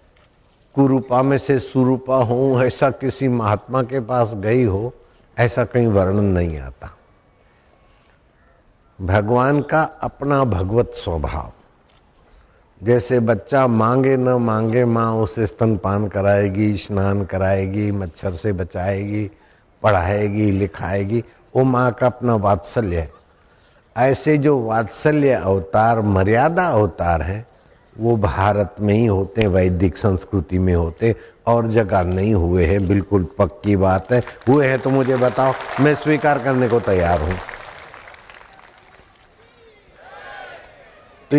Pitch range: 95-125 Hz